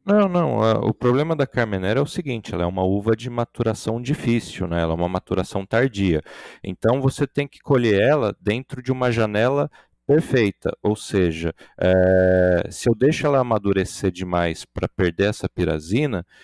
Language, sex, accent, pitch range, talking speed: Portuguese, male, Brazilian, 95-125 Hz, 170 wpm